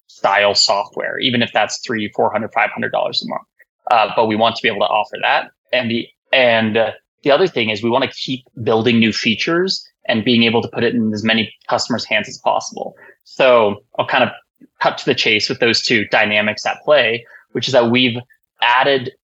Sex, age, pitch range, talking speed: male, 20-39, 115-135 Hz, 220 wpm